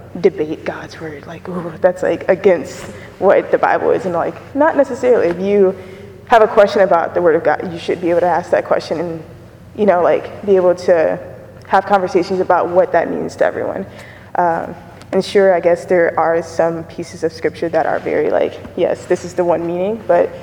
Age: 20-39